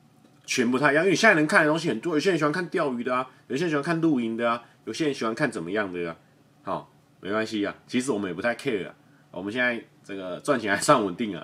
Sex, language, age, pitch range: male, Chinese, 30-49, 110-145 Hz